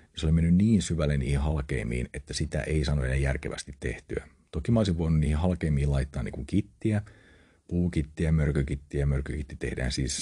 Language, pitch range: Finnish, 70-85 Hz